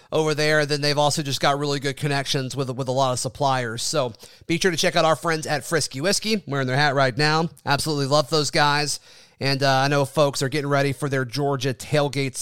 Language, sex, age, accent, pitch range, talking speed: English, male, 30-49, American, 145-180 Hz, 235 wpm